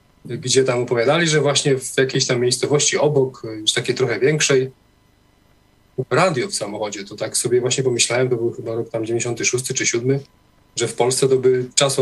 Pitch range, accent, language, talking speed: 115-135 Hz, native, Polish, 180 wpm